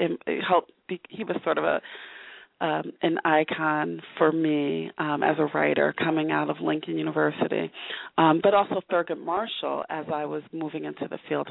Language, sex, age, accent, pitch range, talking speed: English, female, 30-49, American, 150-195 Hz, 170 wpm